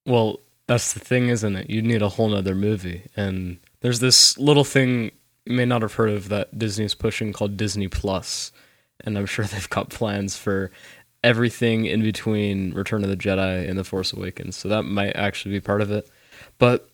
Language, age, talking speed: English, 20-39, 200 wpm